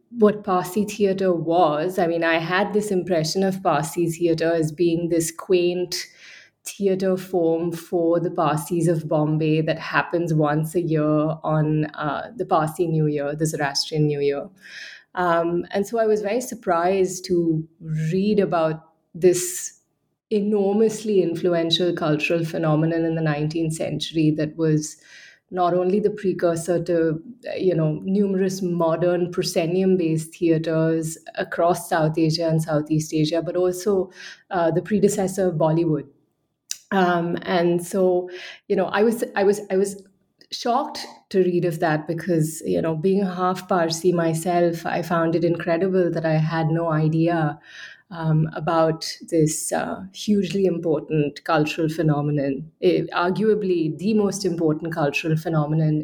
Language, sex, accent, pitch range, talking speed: English, female, Indian, 160-190 Hz, 140 wpm